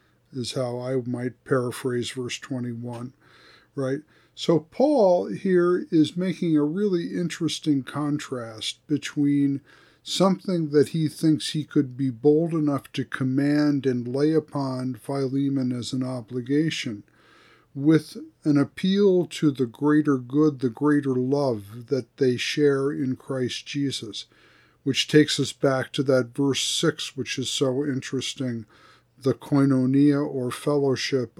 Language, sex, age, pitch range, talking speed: English, male, 50-69, 130-155 Hz, 130 wpm